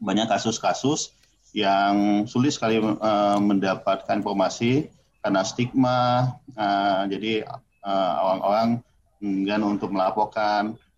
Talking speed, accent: 95 wpm, native